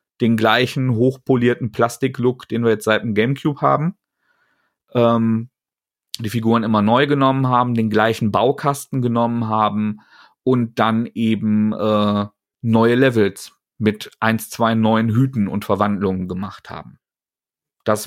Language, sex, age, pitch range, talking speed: German, male, 40-59, 110-140 Hz, 130 wpm